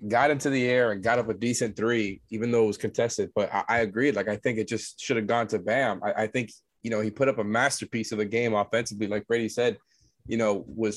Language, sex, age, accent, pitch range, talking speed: English, male, 20-39, American, 110-130 Hz, 270 wpm